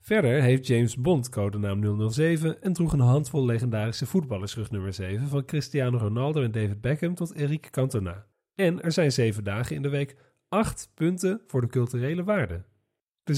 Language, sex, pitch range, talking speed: Dutch, male, 115-165 Hz, 170 wpm